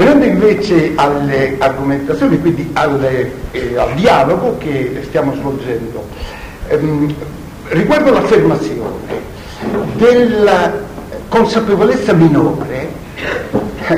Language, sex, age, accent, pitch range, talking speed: Italian, male, 60-79, native, 145-230 Hz, 75 wpm